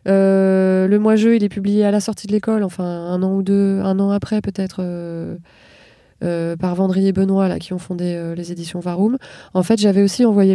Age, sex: 20-39, female